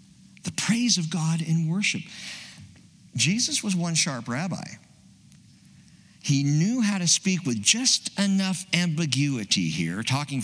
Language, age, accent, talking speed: English, 50-69, American, 125 wpm